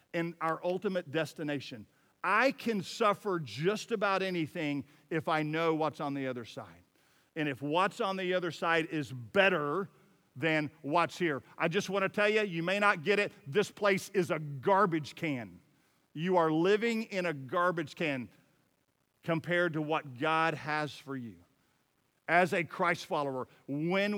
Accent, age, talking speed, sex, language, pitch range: American, 50-69, 165 wpm, male, English, 160-210 Hz